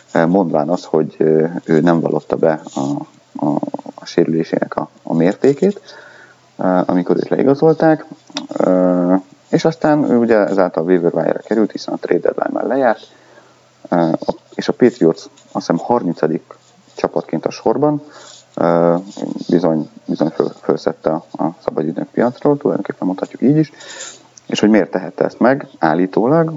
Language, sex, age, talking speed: Hungarian, male, 30-49, 130 wpm